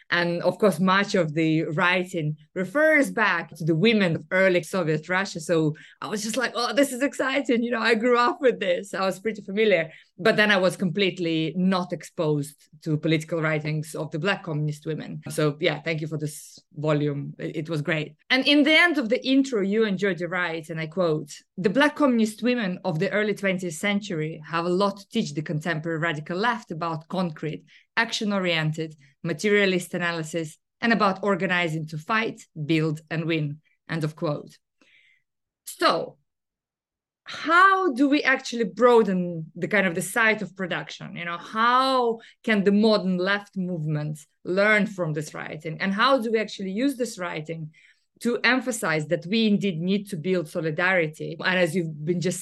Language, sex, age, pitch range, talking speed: English, female, 20-39, 160-205 Hz, 180 wpm